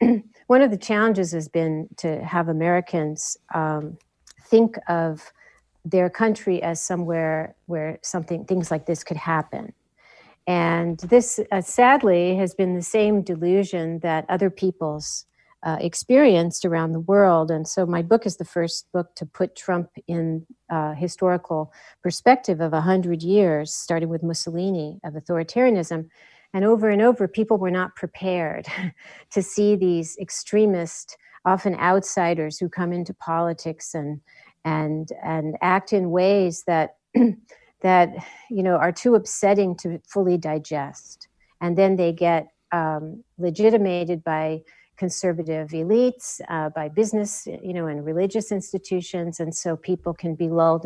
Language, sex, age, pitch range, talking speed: English, female, 50-69, 165-195 Hz, 145 wpm